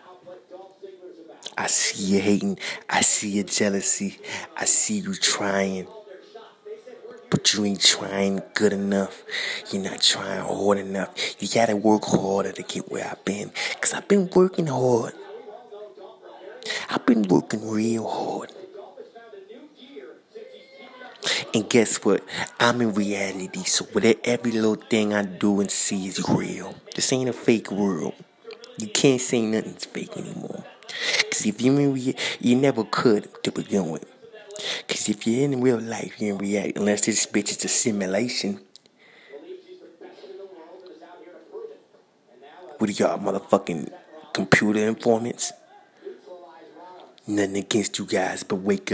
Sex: male